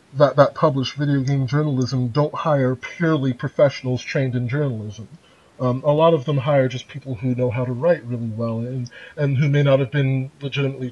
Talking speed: 200 wpm